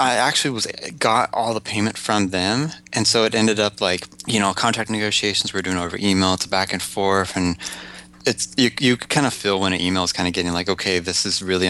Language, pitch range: English, 95-115 Hz